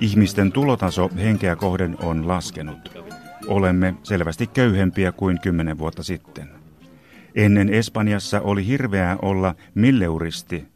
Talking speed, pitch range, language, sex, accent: 105 wpm, 85-105 Hz, Finnish, male, native